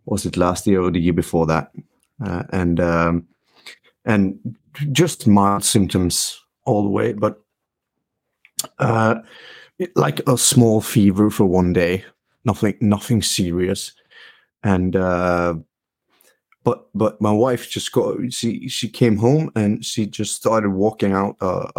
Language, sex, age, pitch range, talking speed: English, male, 30-49, 100-125 Hz, 140 wpm